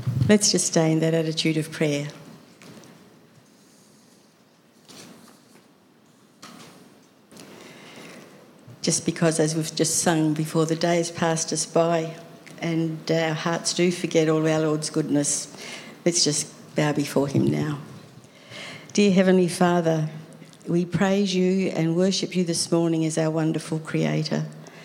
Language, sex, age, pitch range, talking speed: English, female, 60-79, 155-180 Hz, 120 wpm